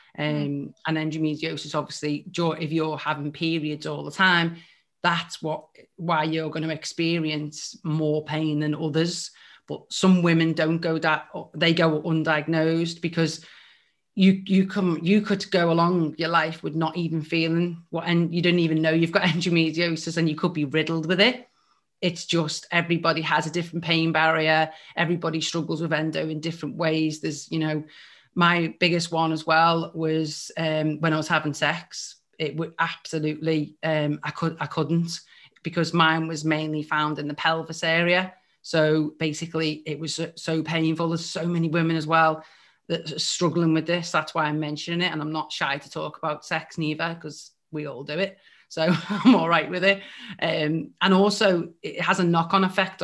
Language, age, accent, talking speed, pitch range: English, 30-49, British, 180 wpm, 155-170 Hz